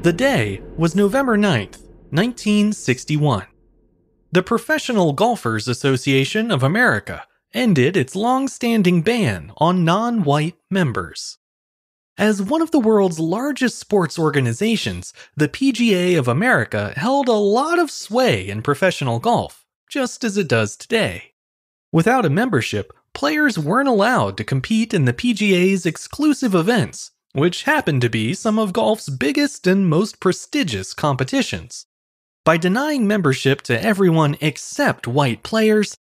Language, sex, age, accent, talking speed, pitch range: English, male, 30-49, American, 130 wpm, 135-225 Hz